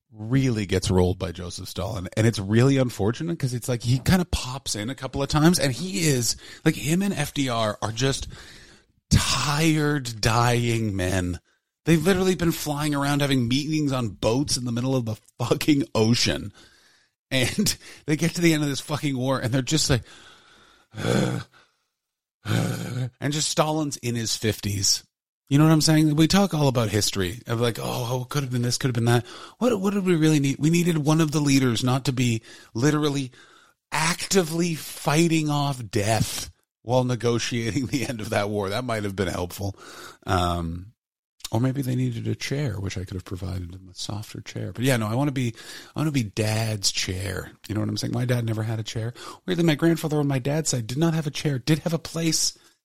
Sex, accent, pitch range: male, American, 110-150 Hz